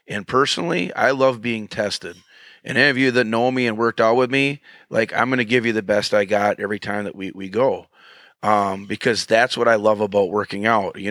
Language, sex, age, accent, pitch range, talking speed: English, male, 30-49, American, 105-120 Hz, 240 wpm